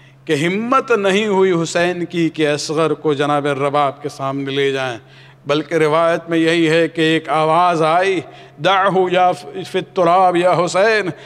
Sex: male